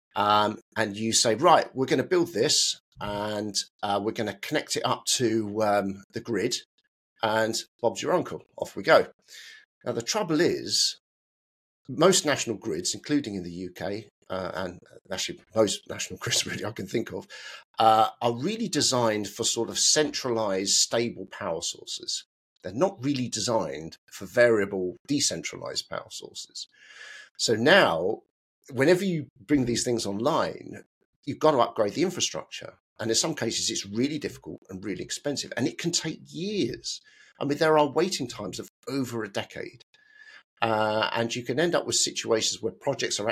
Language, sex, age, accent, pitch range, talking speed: English, male, 50-69, British, 105-155 Hz, 170 wpm